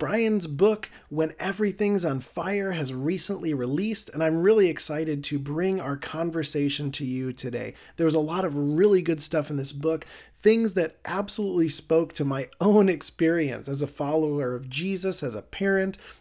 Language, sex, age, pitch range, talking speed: English, male, 40-59, 145-195 Hz, 175 wpm